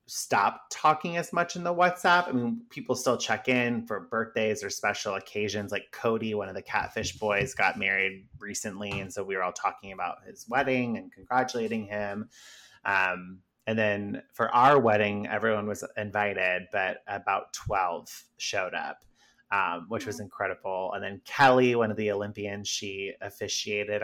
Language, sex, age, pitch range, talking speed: English, male, 30-49, 100-130 Hz, 165 wpm